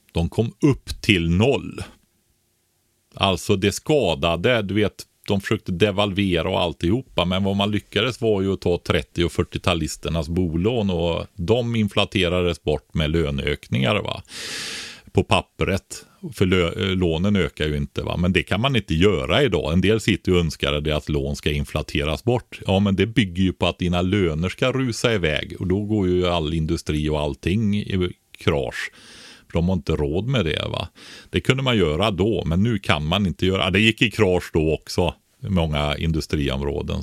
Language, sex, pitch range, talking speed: Swedish, male, 85-110 Hz, 180 wpm